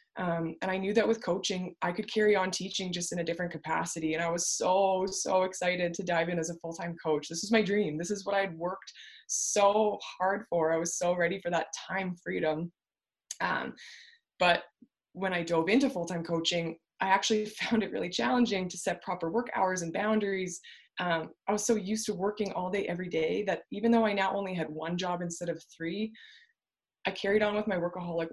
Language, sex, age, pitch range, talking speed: English, female, 20-39, 165-200 Hz, 215 wpm